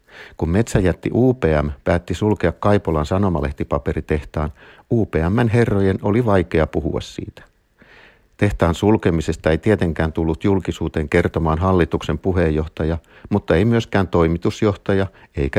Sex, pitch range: male, 80-105 Hz